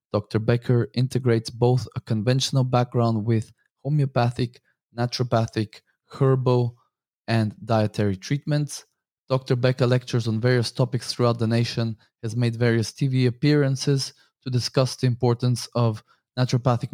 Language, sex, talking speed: English, male, 120 wpm